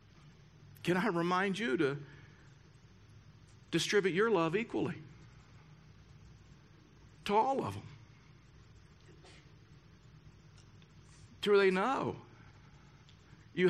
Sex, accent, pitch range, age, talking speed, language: male, American, 130-170 Hz, 50-69, 80 wpm, English